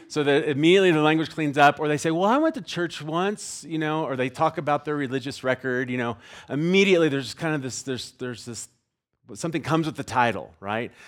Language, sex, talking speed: English, male, 220 wpm